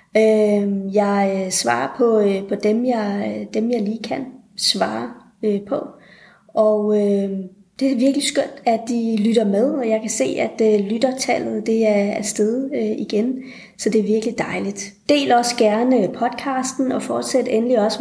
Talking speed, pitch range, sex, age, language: 155 wpm, 200-240 Hz, female, 30-49, Danish